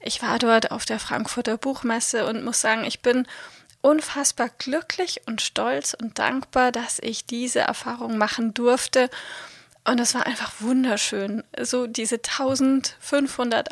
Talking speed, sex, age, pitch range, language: 140 wpm, female, 30-49, 225-265 Hz, German